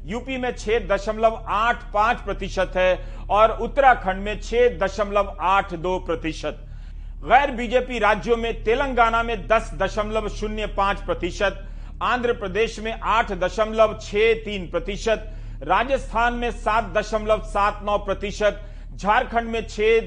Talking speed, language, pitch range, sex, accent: 135 wpm, Hindi, 190-235 Hz, male, native